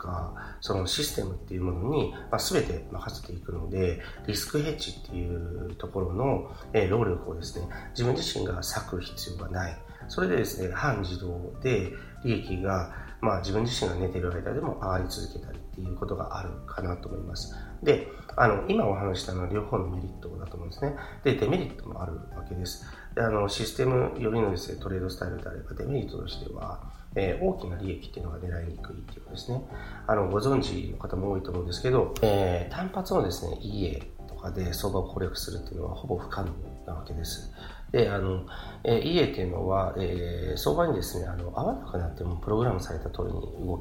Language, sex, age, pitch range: Japanese, male, 40-59, 90-105 Hz